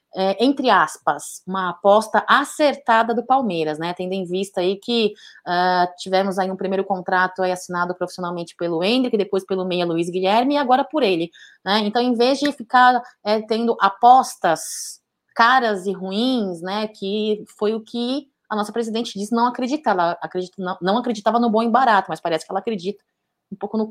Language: Portuguese